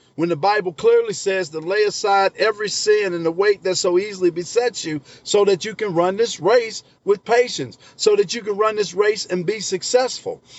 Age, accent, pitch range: 50-69, American, 170-225 Hz